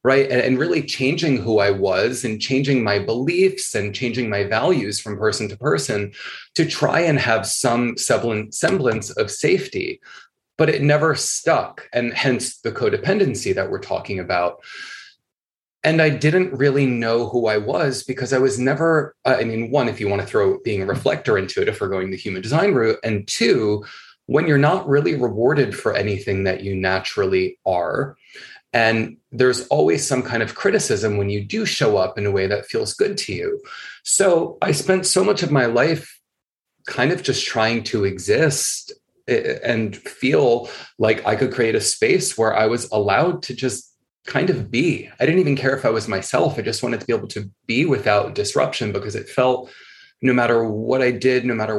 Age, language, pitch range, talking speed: 30-49, English, 110-175 Hz, 190 wpm